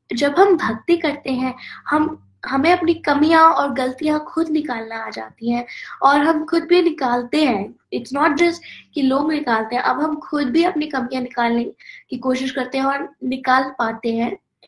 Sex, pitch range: female, 245-295 Hz